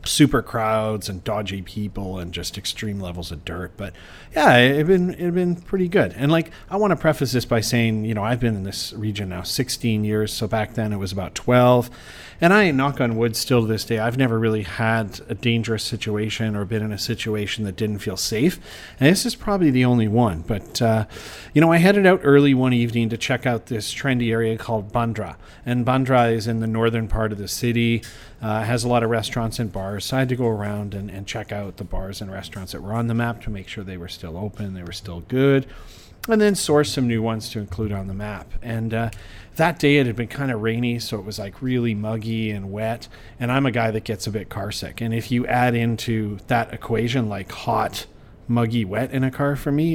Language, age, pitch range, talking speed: English, 40-59, 105-125 Hz, 240 wpm